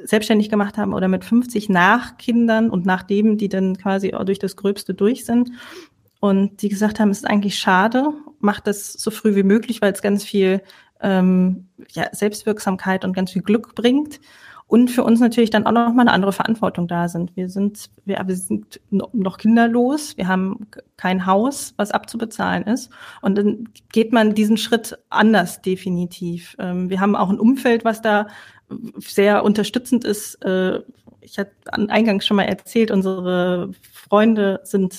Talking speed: 170 wpm